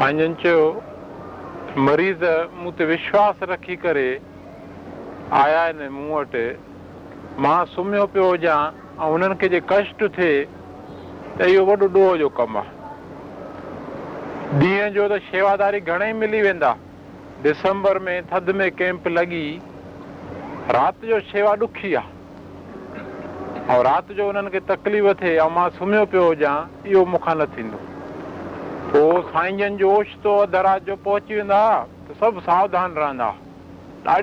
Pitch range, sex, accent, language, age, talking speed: 145-200 Hz, male, native, Hindi, 50-69, 105 wpm